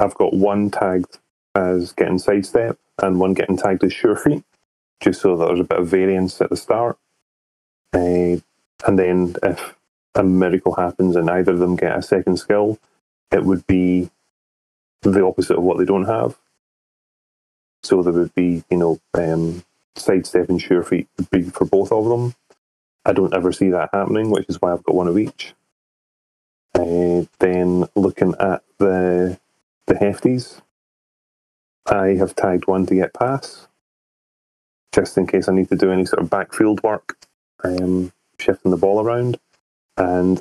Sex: male